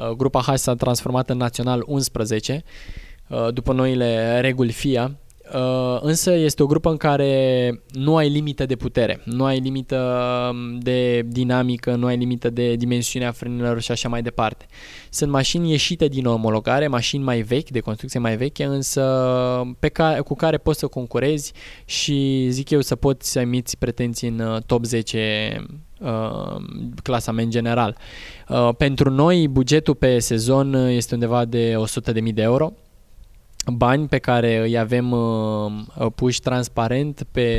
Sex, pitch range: male, 120-140 Hz